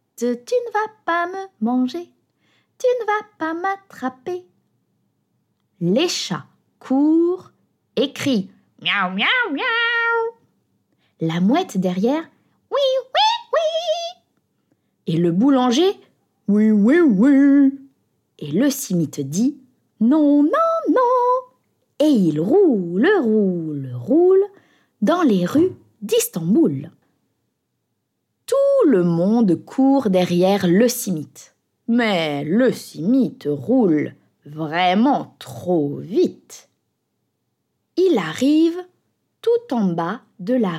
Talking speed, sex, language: 100 wpm, female, French